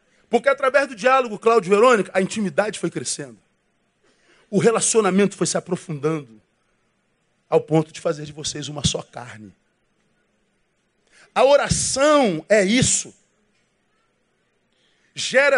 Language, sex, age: Portuguese, male, 40-59